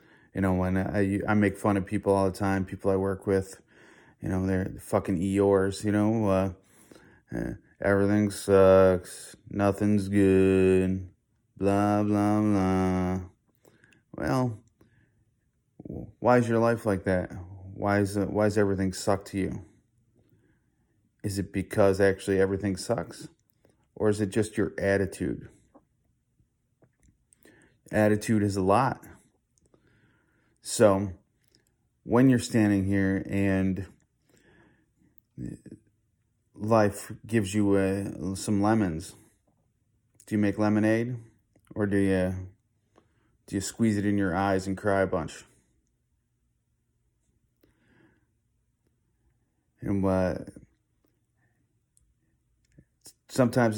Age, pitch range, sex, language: 30-49, 95-110 Hz, male, English